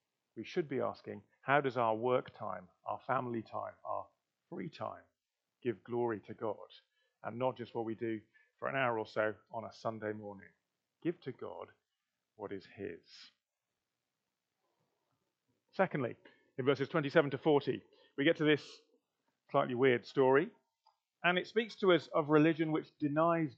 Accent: British